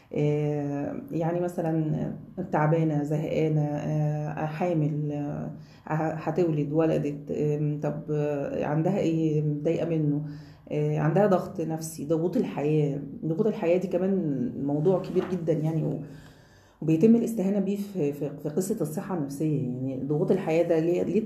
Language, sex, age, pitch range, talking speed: Arabic, female, 30-49, 150-180 Hz, 105 wpm